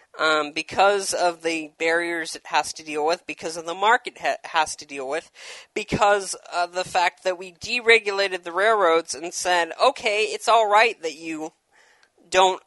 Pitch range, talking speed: 170-245 Hz, 175 wpm